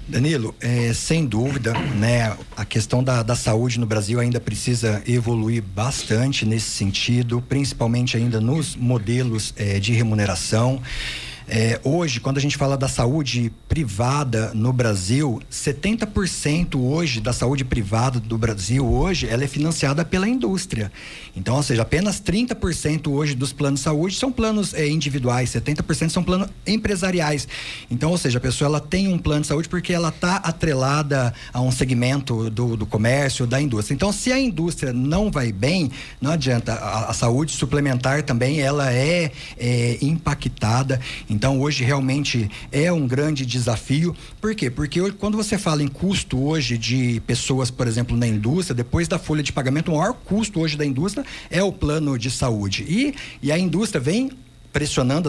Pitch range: 120-165 Hz